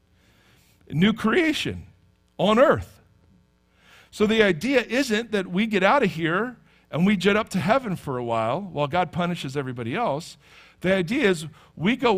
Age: 50-69